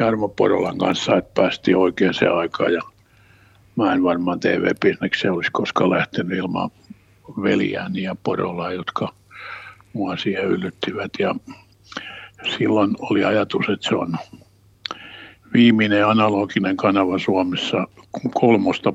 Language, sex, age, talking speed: Finnish, male, 60-79, 115 wpm